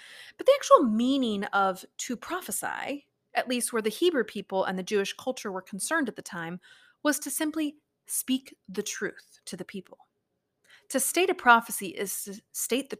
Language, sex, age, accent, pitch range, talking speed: English, female, 30-49, American, 200-275 Hz, 180 wpm